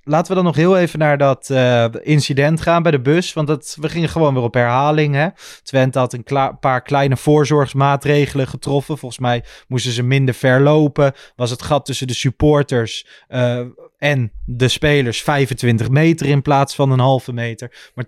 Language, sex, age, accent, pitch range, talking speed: Dutch, male, 20-39, Dutch, 115-140 Hz, 180 wpm